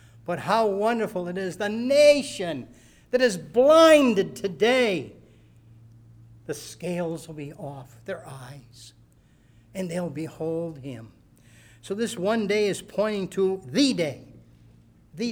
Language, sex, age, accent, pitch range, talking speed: English, male, 60-79, American, 115-195 Hz, 125 wpm